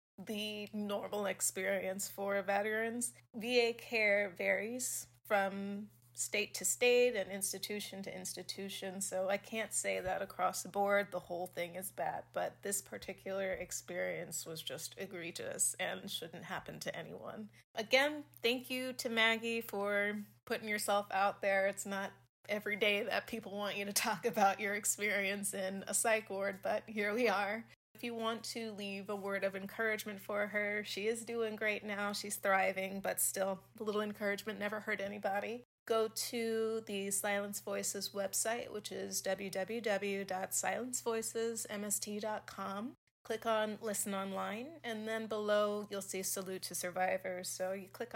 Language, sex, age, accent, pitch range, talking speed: English, female, 30-49, American, 195-215 Hz, 150 wpm